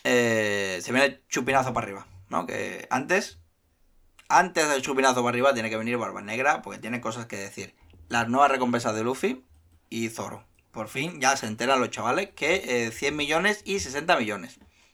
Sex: male